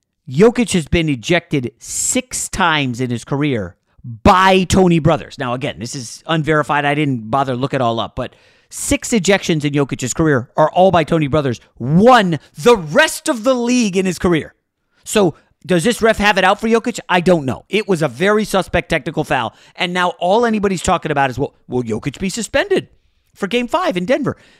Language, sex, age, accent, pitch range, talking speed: English, male, 40-59, American, 145-215 Hz, 200 wpm